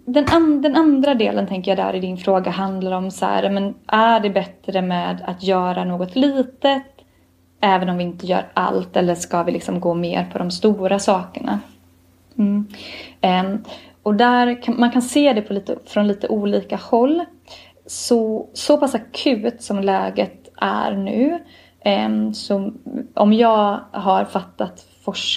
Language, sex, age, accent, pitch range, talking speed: English, female, 20-39, Swedish, 180-220 Hz, 155 wpm